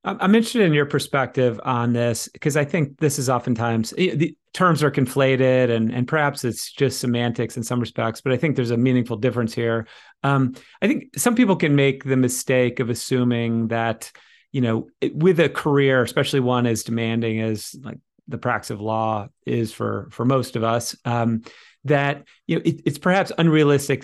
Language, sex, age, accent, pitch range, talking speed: English, male, 30-49, American, 120-145 Hz, 185 wpm